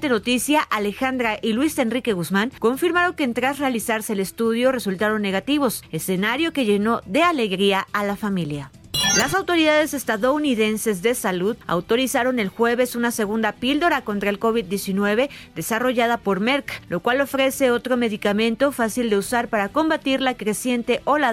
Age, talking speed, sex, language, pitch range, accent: 40-59, 150 wpm, female, Spanish, 205-255 Hz, Mexican